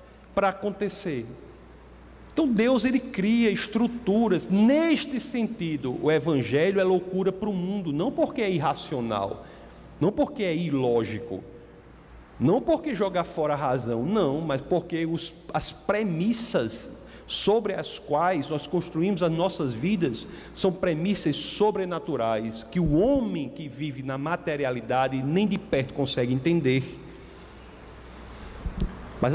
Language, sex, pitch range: Portuguese, male, 150-225 Hz